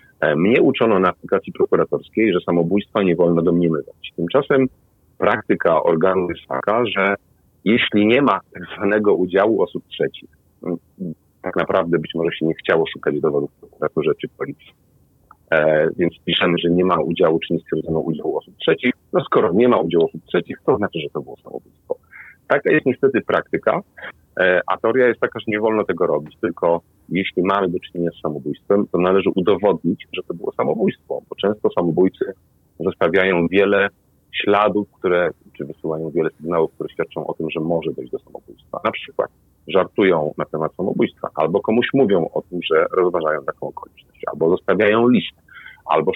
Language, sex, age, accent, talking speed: Polish, male, 40-59, native, 165 wpm